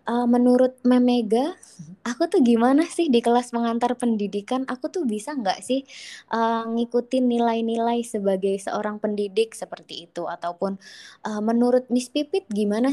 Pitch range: 190-235 Hz